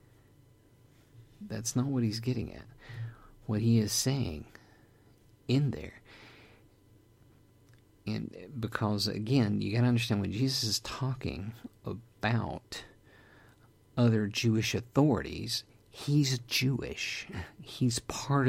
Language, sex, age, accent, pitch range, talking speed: English, male, 50-69, American, 105-125 Hz, 95 wpm